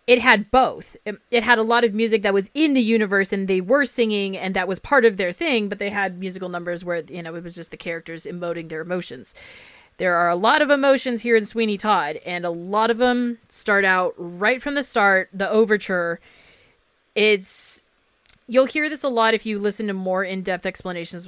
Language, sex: English, female